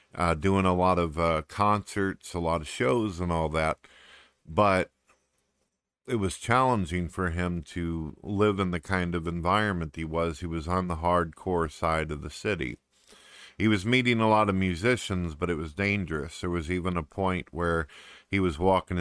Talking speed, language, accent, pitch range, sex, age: 185 wpm, English, American, 80-95 Hz, male, 50-69